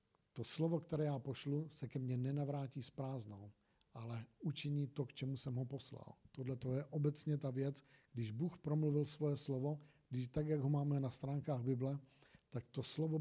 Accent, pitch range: native, 130-150 Hz